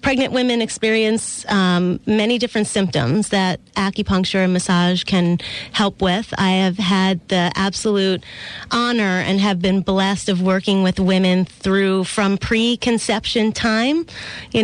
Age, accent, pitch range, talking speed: 30-49, American, 185-215 Hz, 135 wpm